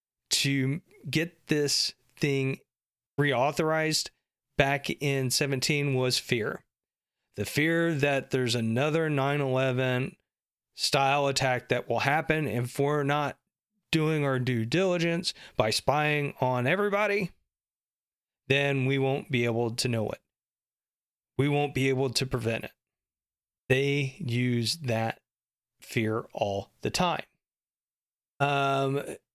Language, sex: English, male